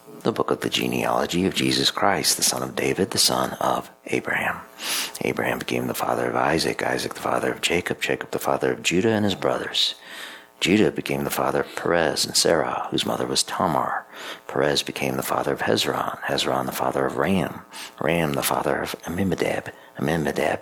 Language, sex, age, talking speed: English, male, 50-69, 185 wpm